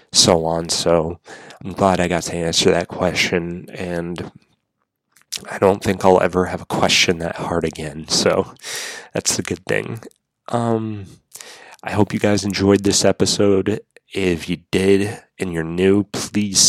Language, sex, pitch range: English, male, 90-100 Hz